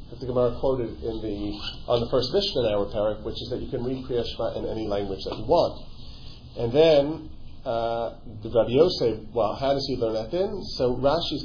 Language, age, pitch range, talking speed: English, 40-59, 110-140 Hz, 200 wpm